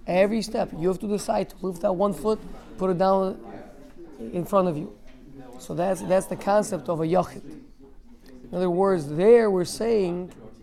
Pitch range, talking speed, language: 160-220 Hz, 180 wpm, English